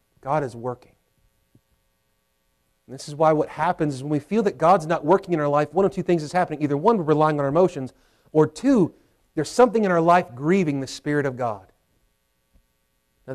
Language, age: English, 40-59